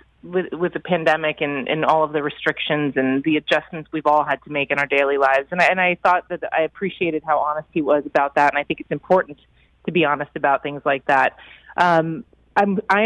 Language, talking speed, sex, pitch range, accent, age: English, 225 wpm, female, 145-175 Hz, American, 30-49